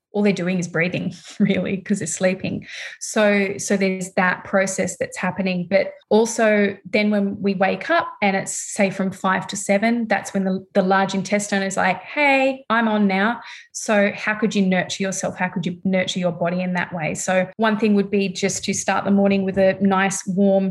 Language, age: English, 20-39